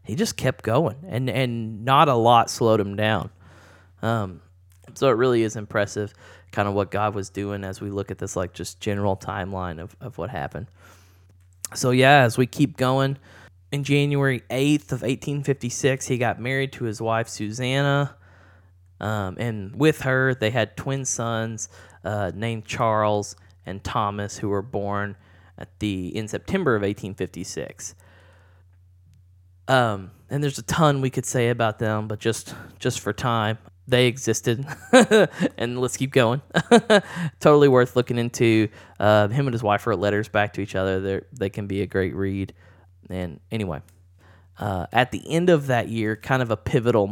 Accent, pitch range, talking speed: American, 95-125 Hz, 165 wpm